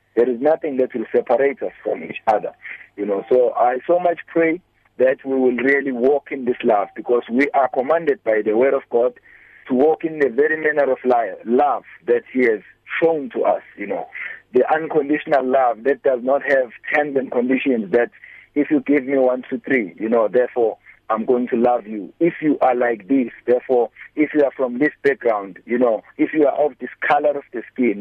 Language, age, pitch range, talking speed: English, 50-69, 120-150 Hz, 210 wpm